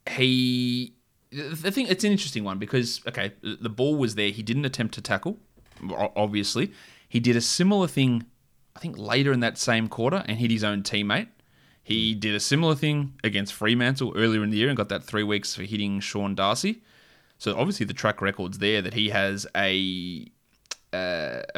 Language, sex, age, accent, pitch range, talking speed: English, male, 20-39, Australian, 100-125 Hz, 185 wpm